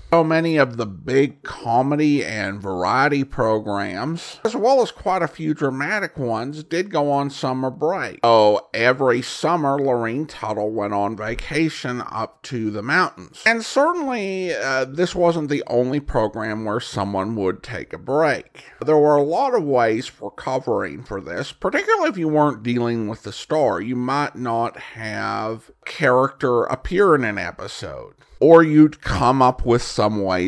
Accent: American